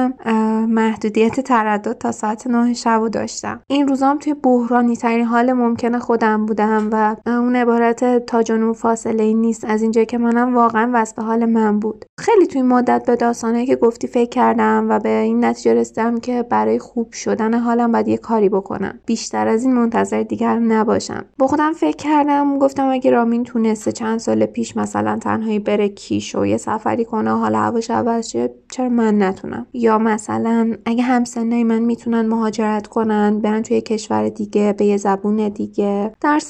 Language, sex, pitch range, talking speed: Persian, female, 205-240 Hz, 175 wpm